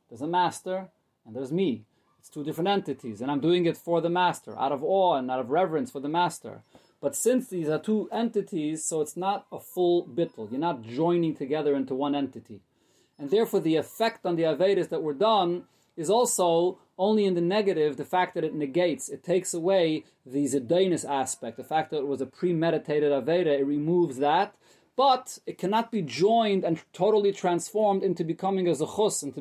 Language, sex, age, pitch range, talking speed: English, male, 30-49, 145-185 Hz, 200 wpm